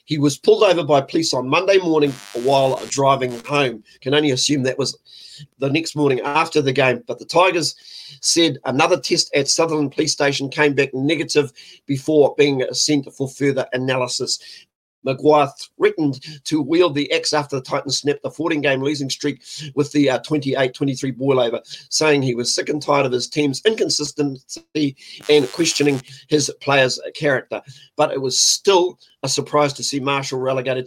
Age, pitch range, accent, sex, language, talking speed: 40-59, 135-155 Hz, Australian, male, English, 165 wpm